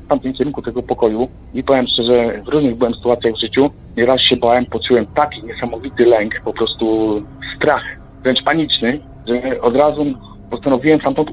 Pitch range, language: 120-145 Hz, Polish